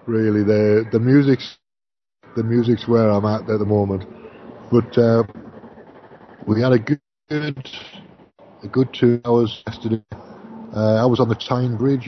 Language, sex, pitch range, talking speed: English, male, 110-130 Hz, 150 wpm